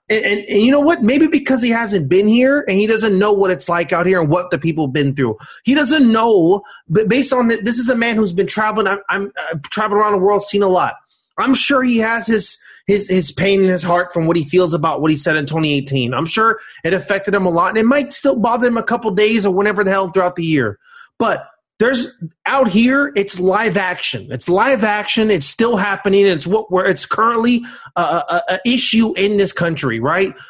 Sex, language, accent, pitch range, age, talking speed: male, English, American, 180-225 Hz, 30-49, 240 wpm